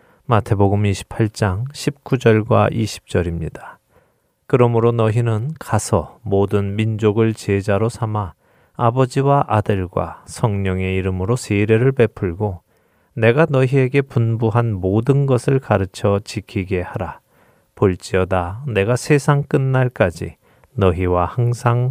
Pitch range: 95-120 Hz